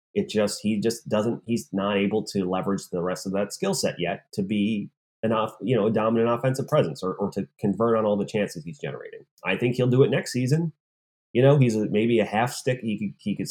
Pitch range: 85-110 Hz